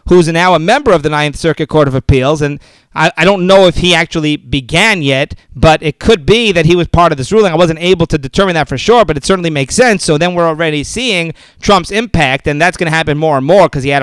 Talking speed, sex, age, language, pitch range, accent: 265 wpm, male, 40-59, English, 150-190 Hz, American